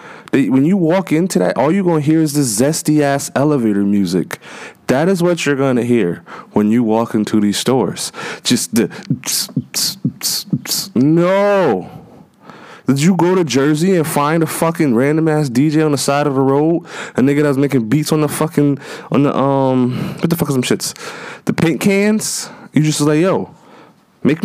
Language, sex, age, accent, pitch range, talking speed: English, male, 20-39, American, 125-160 Hz, 195 wpm